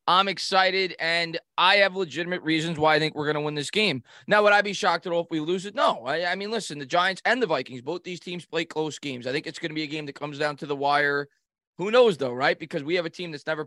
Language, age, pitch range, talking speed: English, 20-39, 150-180 Hz, 290 wpm